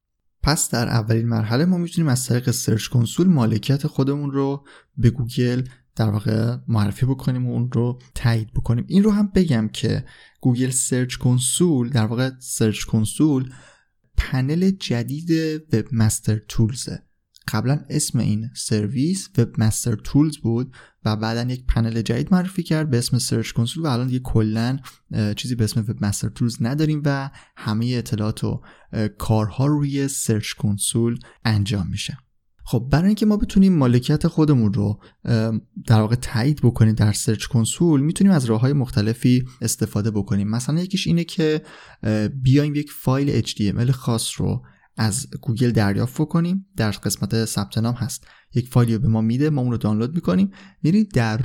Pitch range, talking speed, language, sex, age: 110-145 Hz, 160 wpm, Persian, male, 20-39